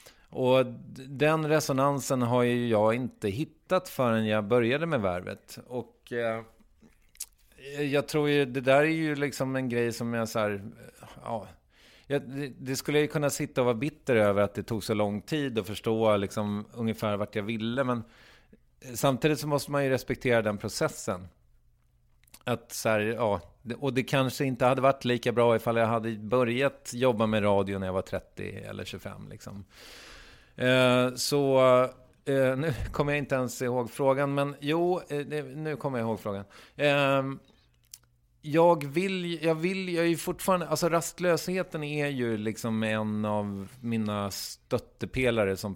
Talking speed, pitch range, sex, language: 155 wpm, 110-140 Hz, male, English